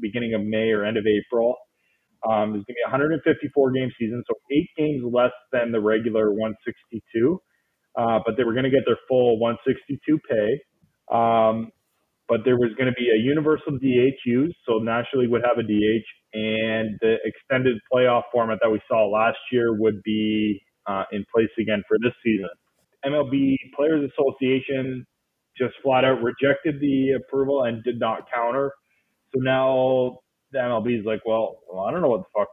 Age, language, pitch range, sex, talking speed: 20-39, English, 115-140 Hz, male, 175 wpm